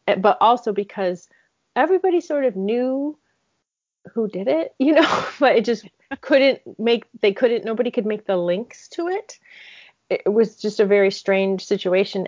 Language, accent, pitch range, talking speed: English, American, 185-220 Hz, 160 wpm